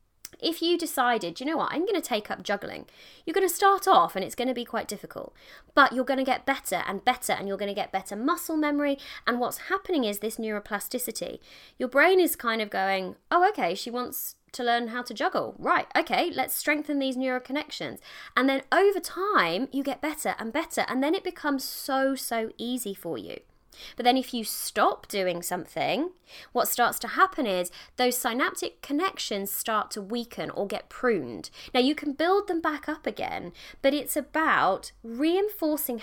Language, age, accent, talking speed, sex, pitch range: English, 20-39, British, 200 wpm, female, 230-315 Hz